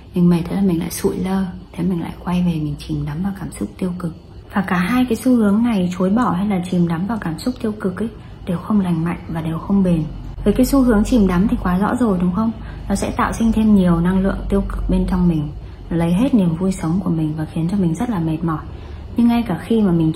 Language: Vietnamese